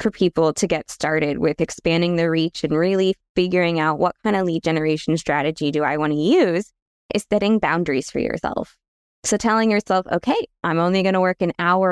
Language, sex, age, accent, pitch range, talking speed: English, female, 20-39, American, 160-205 Hz, 195 wpm